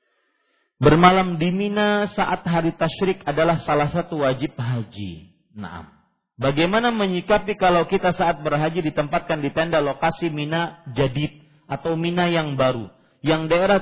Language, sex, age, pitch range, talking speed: Malay, male, 40-59, 140-190 Hz, 130 wpm